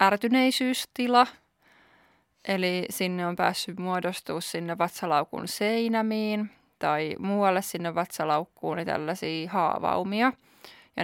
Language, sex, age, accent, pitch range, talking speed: Finnish, female, 20-39, native, 180-215 Hz, 85 wpm